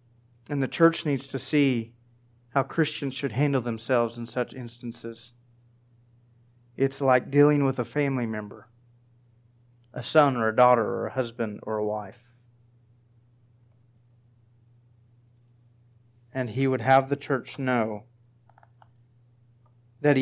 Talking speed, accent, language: 120 wpm, American, English